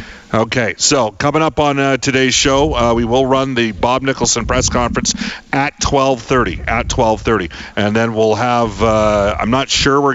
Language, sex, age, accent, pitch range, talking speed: English, male, 40-59, American, 110-135 Hz, 180 wpm